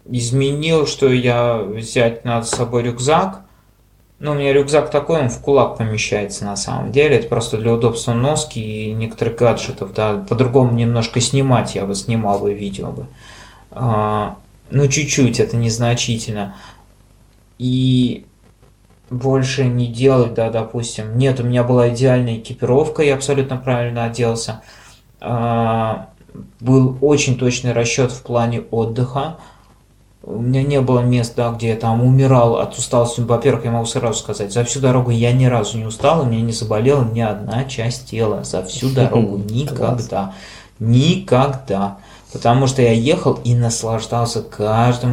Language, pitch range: Russian, 115-130 Hz